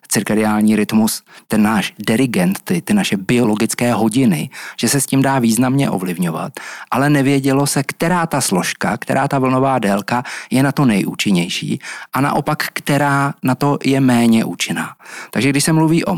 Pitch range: 120-155 Hz